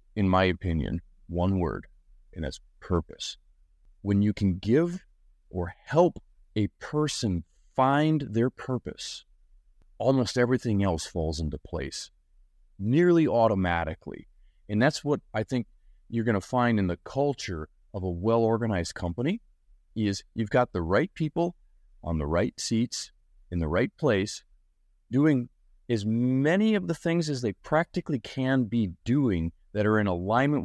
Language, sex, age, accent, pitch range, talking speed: English, male, 30-49, American, 95-135 Hz, 145 wpm